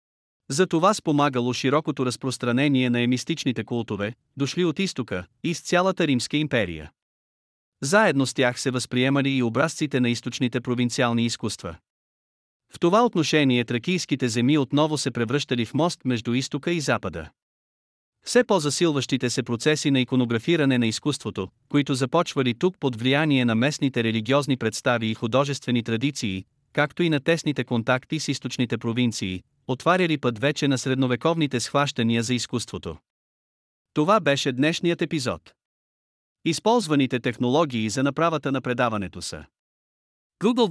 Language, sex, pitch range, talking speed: Bulgarian, male, 120-155 Hz, 130 wpm